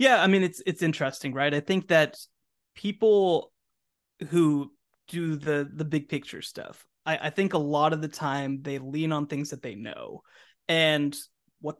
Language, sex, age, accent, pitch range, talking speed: English, male, 20-39, American, 145-170 Hz, 180 wpm